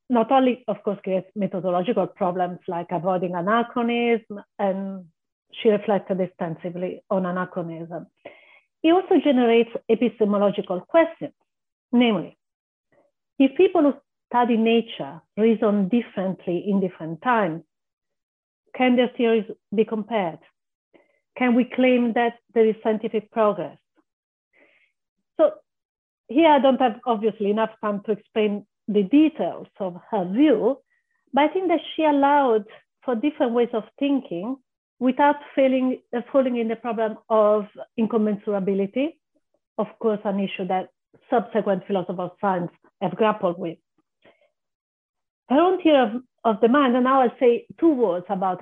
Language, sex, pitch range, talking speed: English, female, 195-255 Hz, 130 wpm